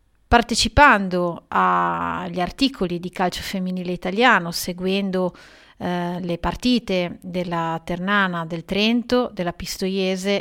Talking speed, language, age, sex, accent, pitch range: 100 wpm, Italian, 30-49, female, native, 180-210 Hz